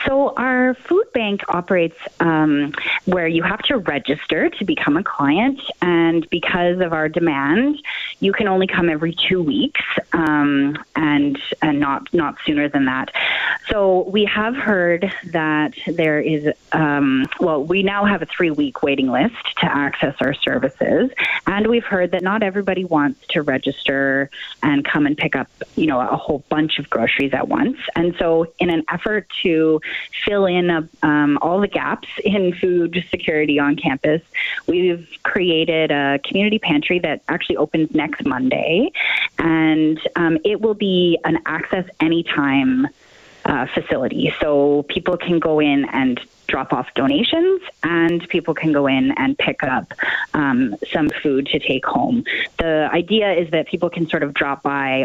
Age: 30-49